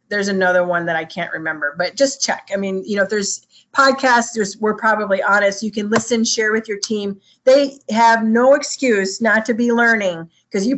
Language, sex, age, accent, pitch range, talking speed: English, female, 30-49, American, 200-250 Hz, 210 wpm